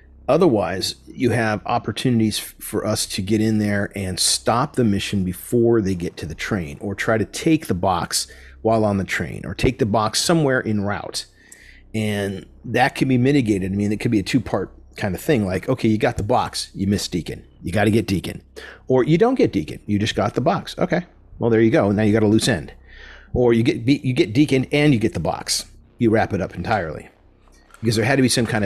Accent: American